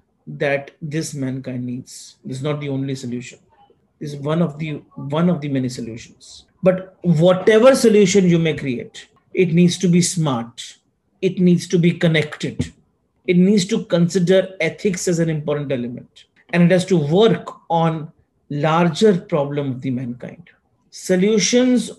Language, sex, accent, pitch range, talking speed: English, male, Indian, 145-185 Hz, 150 wpm